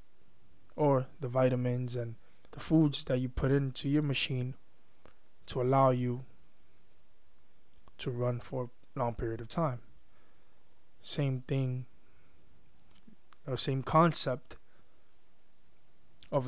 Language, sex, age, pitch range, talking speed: English, male, 20-39, 120-140 Hz, 100 wpm